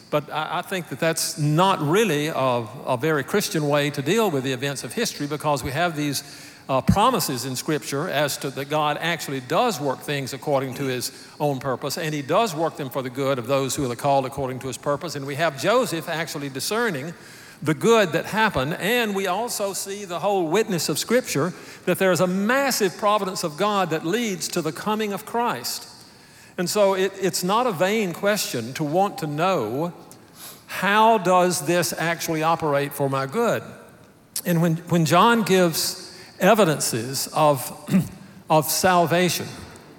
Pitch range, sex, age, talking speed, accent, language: 145-190 Hz, male, 50-69, 180 wpm, American, English